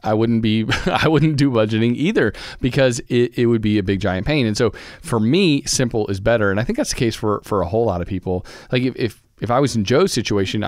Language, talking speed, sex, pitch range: English, 260 wpm, male, 105-140 Hz